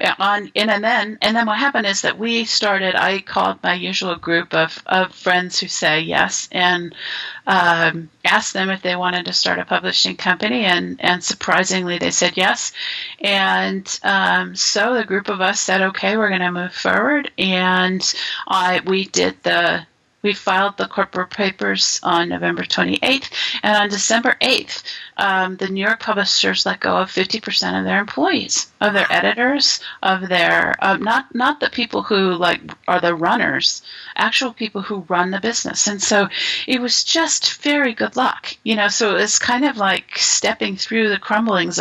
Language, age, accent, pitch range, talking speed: English, 40-59, American, 180-215 Hz, 175 wpm